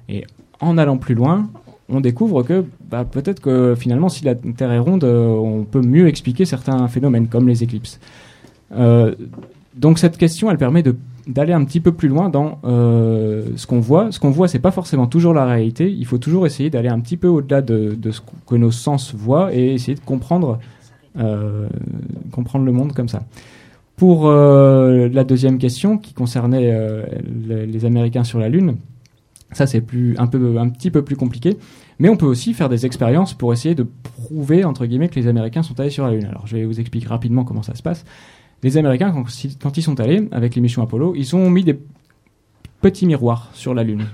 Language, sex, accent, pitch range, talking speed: French, male, French, 120-160 Hz, 205 wpm